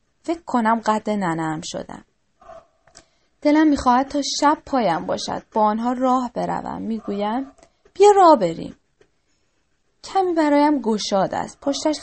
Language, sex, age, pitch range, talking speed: Persian, female, 10-29, 200-285 Hz, 120 wpm